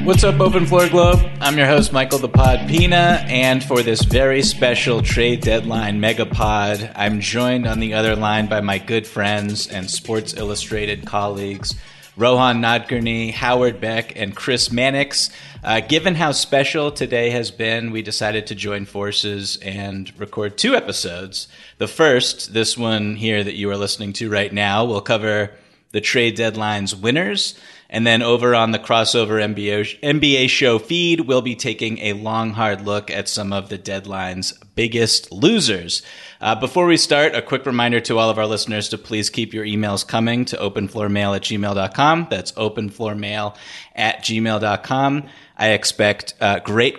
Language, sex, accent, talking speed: English, male, American, 165 wpm